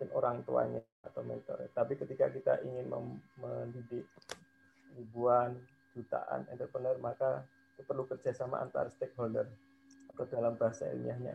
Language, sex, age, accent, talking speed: Indonesian, male, 20-39, native, 115 wpm